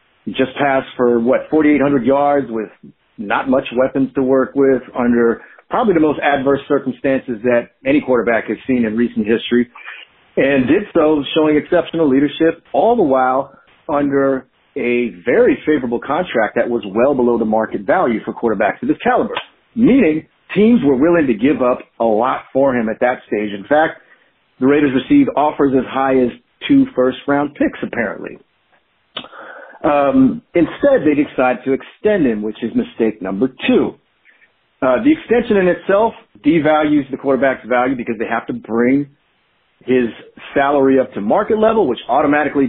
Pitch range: 120-160 Hz